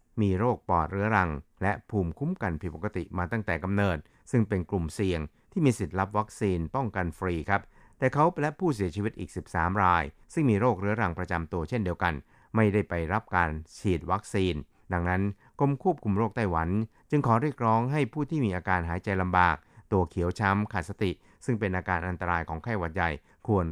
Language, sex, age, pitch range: Thai, male, 60-79, 90-115 Hz